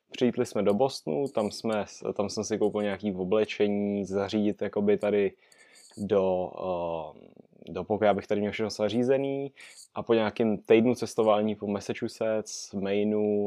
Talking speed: 145 wpm